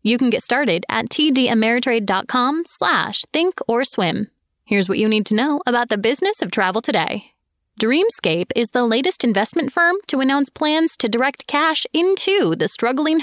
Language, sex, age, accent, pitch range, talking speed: English, female, 20-39, American, 220-310 Hz, 160 wpm